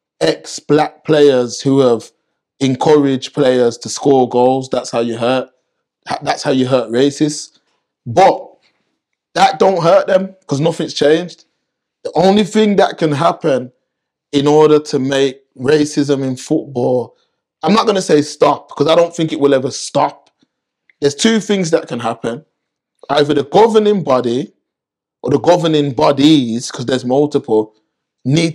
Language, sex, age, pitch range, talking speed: English, male, 20-39, 130-160 Hz, 145 wpm